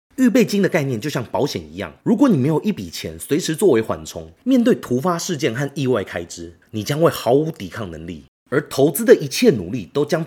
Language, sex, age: Chinese, male, 30-49